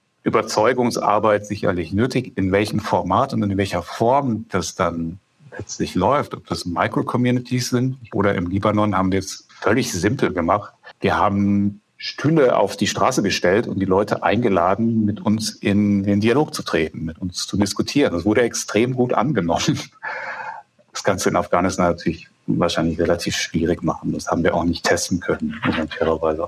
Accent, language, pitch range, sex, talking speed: German, German, 90-115 Hz, male, 170 wpm